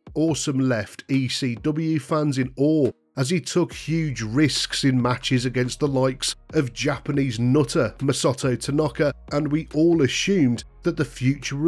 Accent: British